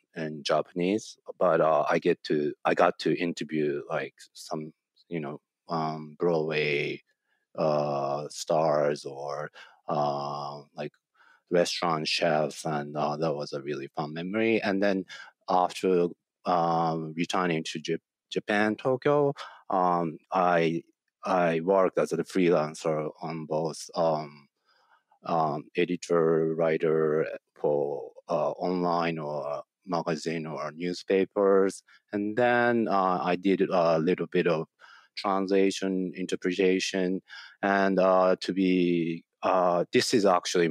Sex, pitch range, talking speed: male, 80-95 Hz, 120 wpm